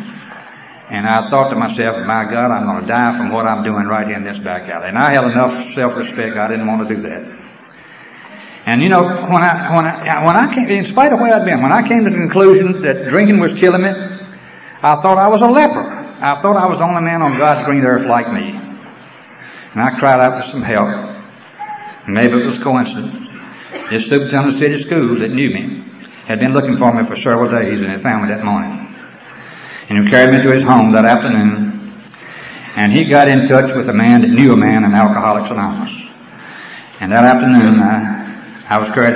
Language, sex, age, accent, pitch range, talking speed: English, male, 60-79, American, 120-205 Hz, 220 wpm